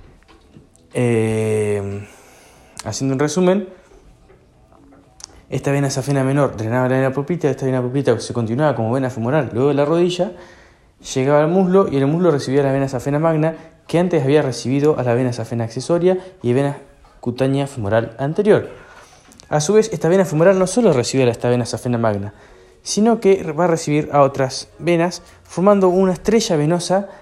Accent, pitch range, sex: Argentinian, 115-160 Hz, male